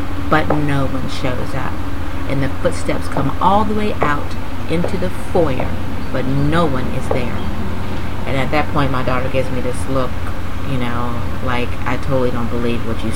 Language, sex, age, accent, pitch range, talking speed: English, female, 40-59, American, 100-140 Hz, 180 wpm